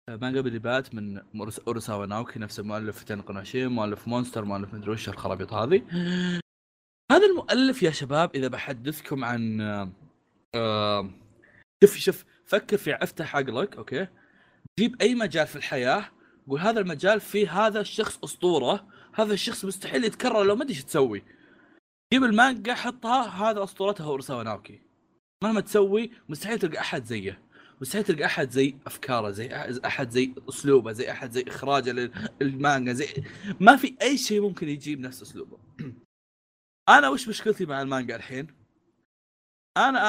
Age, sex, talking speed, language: 20-39, male, 140 wpm, Arabic